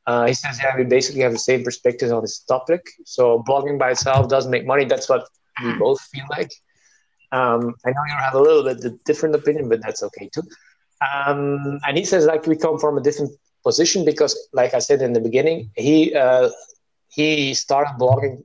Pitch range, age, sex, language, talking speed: 120-155 Hz, 20-39, male, English, 210 wpm